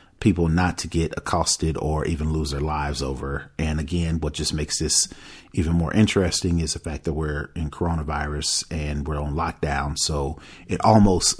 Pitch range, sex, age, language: 80-100 Hz, male, 40-59, English